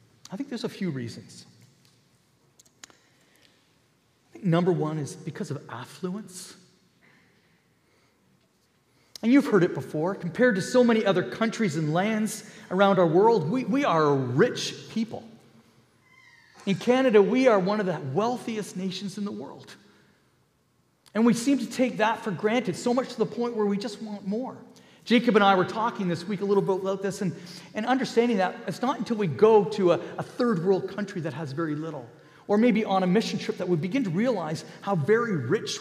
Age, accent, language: 40-59, American, English